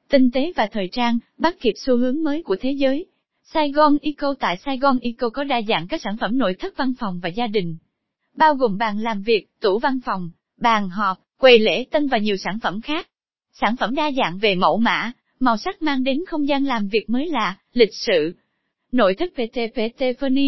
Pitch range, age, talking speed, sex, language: 210-280 Hz, 20-39, 215 wpm, female, Vietnamese